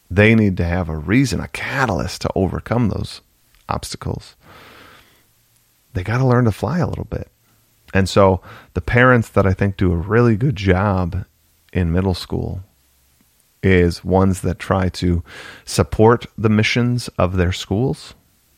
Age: 30-49